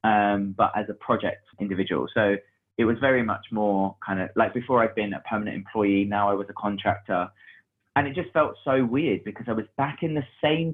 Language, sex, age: English, male, 20-39